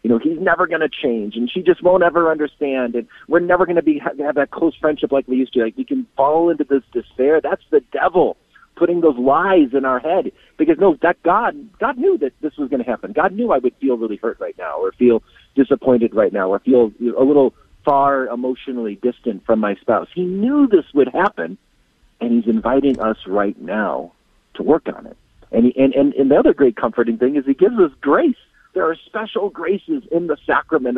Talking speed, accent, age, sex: 225 wpm, American, 50-69, male